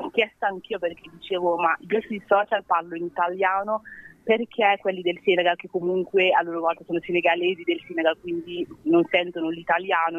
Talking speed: 165 wpm